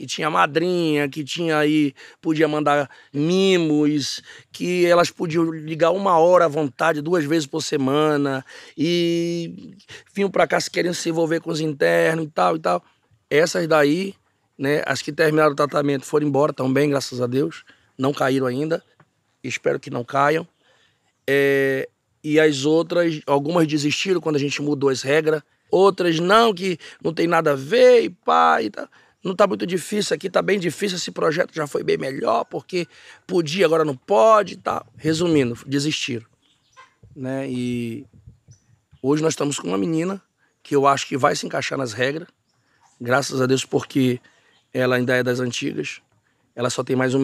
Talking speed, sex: 170 wpm, male